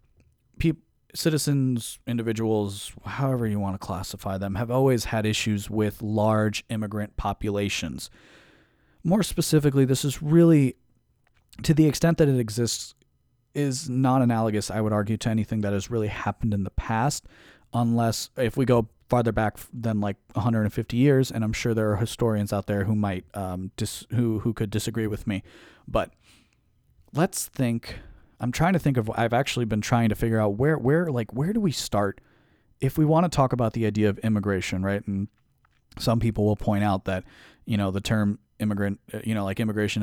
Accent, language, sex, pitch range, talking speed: American, English, male, 105-120 Hz, 175 wpm